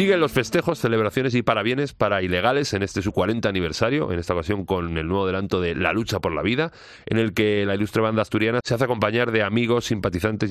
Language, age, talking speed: Spanish, 40-59, 225 wpm